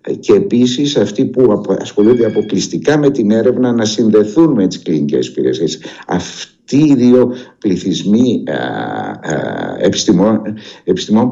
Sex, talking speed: male, 105 wpm